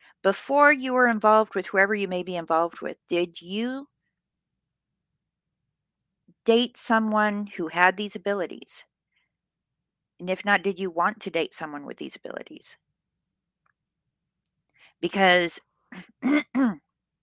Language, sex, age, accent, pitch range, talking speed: English, female, 50-69, American, 170-220 Hz, 110 wpm